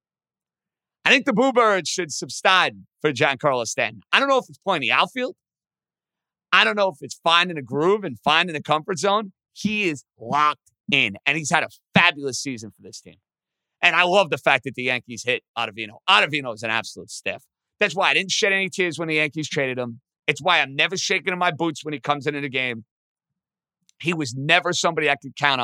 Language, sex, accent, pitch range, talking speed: English, male, American, 135-185 Hz, 215 wpm